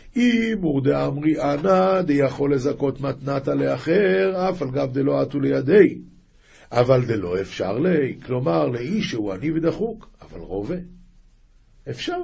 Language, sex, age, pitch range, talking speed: Hebrew, male, 50-69, 115-185 Hz, 130 wpm